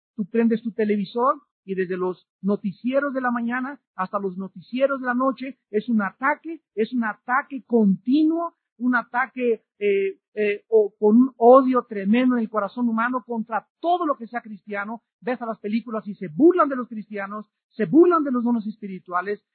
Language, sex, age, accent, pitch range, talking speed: Spanish, male, 40-59, Mexican, 195-250 Hz, 180 wpm